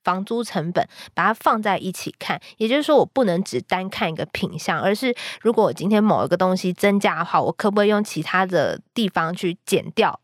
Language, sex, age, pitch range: Chinese, female, 20-39, 170-215 Hz